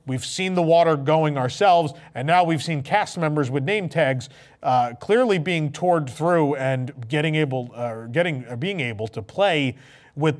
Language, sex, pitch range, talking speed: English, male, 130-160 Hz, 180 wpm